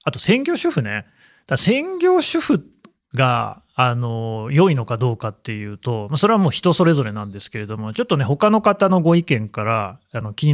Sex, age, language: male, 30-49, Japanese